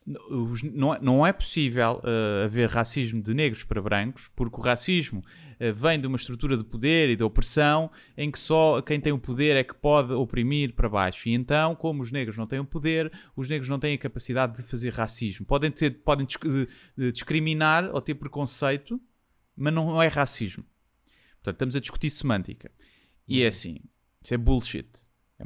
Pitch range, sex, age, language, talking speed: 115-155 Hz, male, 30-49, Portuguese, 175 wpm